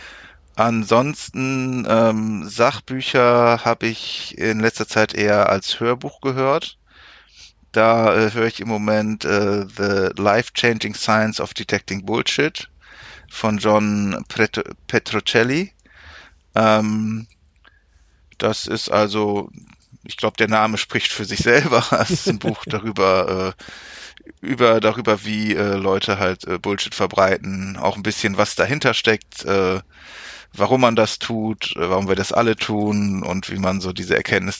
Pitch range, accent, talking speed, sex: 95-115 Hz, German, 130 wpm, male